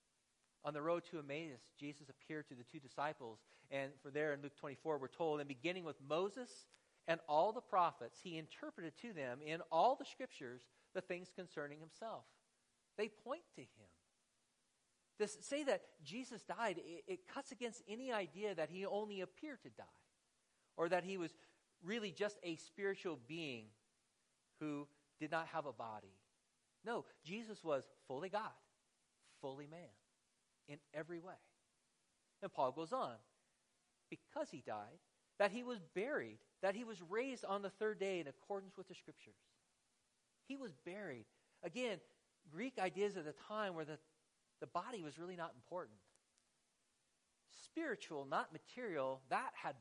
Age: 40-59